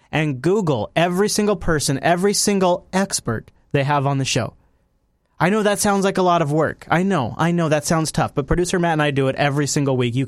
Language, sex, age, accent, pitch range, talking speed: English, male, 30-49, American, 125-155 Hz, 235 wpm